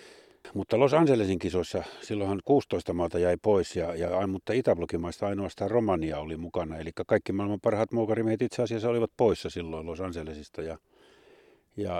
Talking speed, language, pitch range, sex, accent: 145 wpm, Finnish, 85-105 Hz, male, native